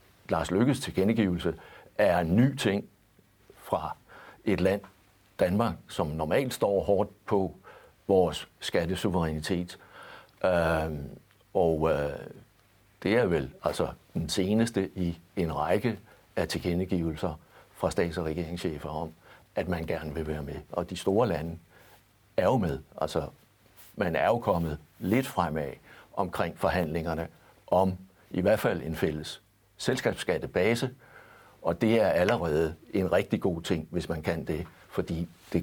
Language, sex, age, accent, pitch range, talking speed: Danish, male, 60-79, native, 80-100 Hz, 135 wpm